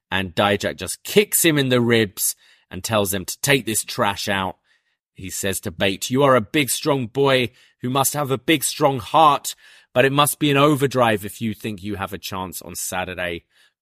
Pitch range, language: 100-140 Hz, English